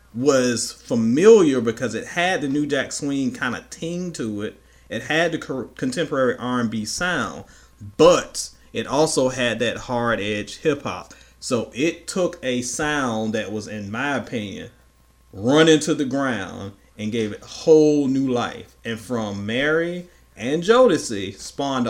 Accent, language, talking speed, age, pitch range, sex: American, English, 150 wpm, 40-59, 105-145 Hz, male